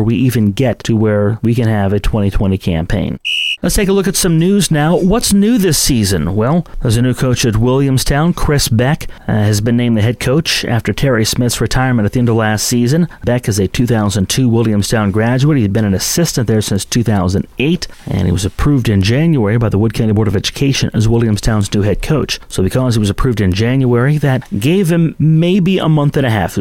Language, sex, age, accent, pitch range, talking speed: English, male, 30-49, American, 110-135 Hz, 220 wpm